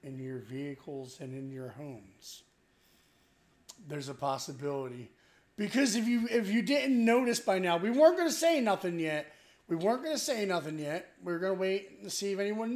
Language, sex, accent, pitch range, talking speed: English, male, American, 145-190 Hz, 200 wpm